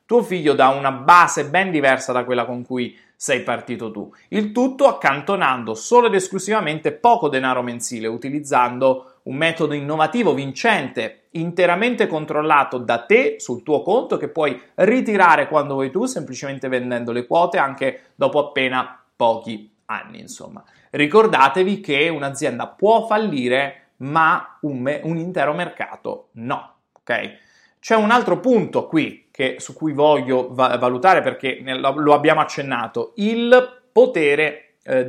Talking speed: 140 wpm